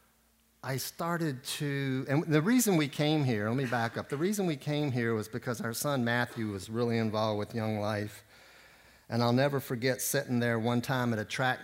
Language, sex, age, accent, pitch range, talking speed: English, male, 50-69, American, 110-135 Hz, 205 wpm